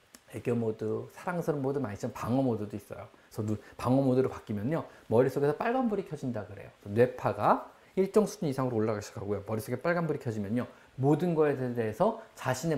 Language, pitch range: Korean, 120-195 Hz